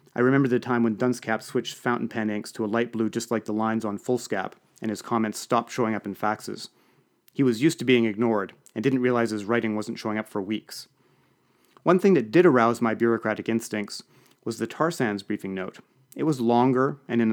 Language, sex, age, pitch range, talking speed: English, male, 30-49, 110-125 Hz, 220 wpm